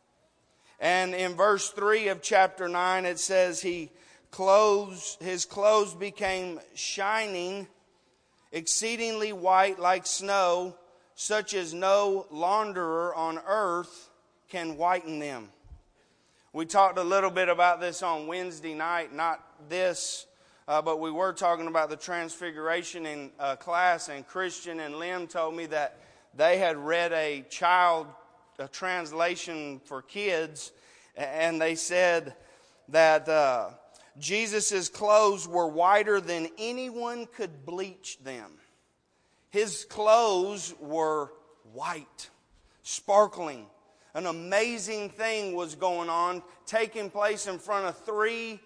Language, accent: English, American